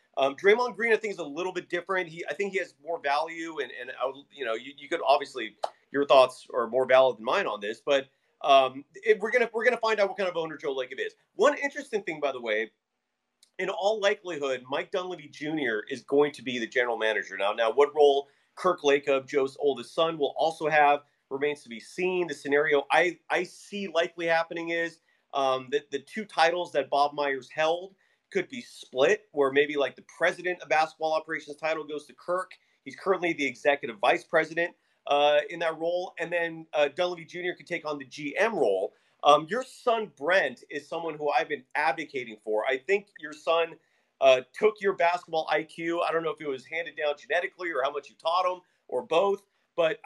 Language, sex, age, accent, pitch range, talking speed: English, male, 30-49, American, 140-180 Hz, 215 wpm